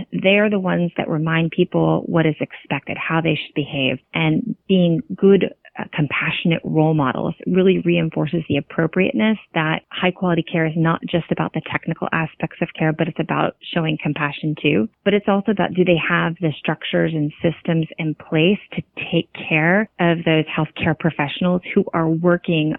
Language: English